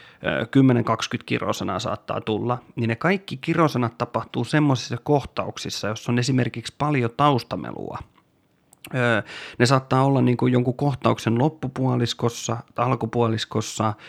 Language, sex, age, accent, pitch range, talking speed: Finnish, male, 30-49, native, 115-125 Hz, 100 wpm